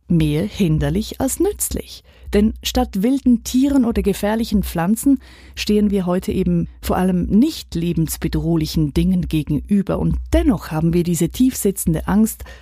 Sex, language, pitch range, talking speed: female, German, 150-230 Hz, 135 wpm